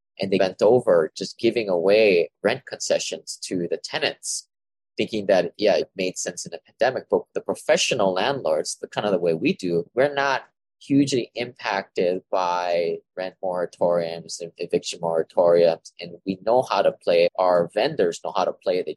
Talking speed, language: 175 wpm, English